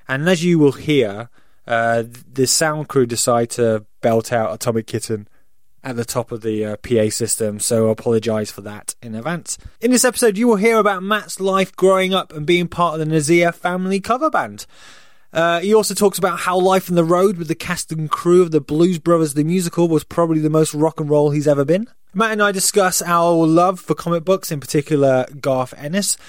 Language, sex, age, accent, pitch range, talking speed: English, male, 20-39, British, 130-185 Hz, 215 wpm